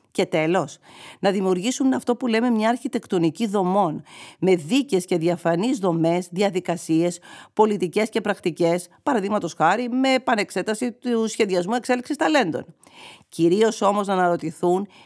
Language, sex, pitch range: Greek, female, 170-220 Hz